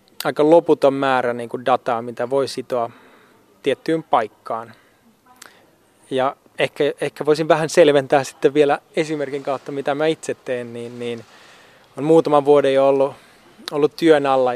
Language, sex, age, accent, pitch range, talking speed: Finnish, male, 20-39, native, 125-145 Hz, 120 wpm